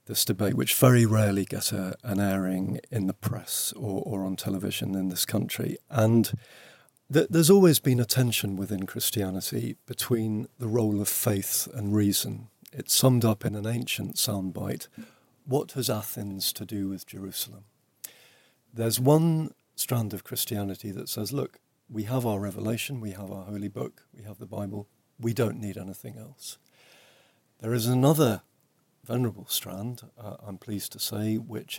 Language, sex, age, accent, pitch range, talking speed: English, male, 50-69, British, 100-125 Hz, 160 wpm